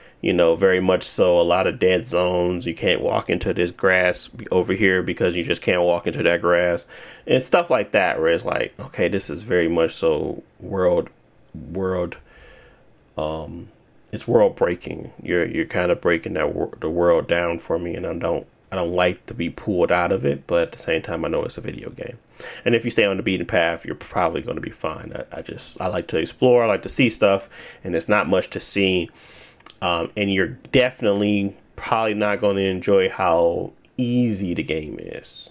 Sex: male